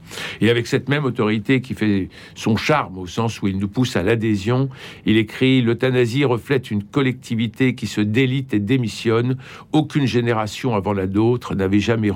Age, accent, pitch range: 60-79, French, 105-130 Hz